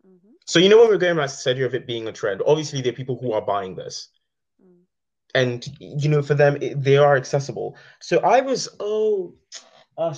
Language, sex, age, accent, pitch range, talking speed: English, male, 20-39, British, 115-150 Hz, 210 wpm